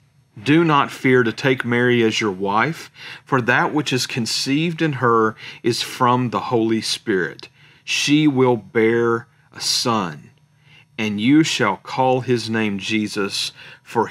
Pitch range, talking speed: 110-135 Hz, 145 wpm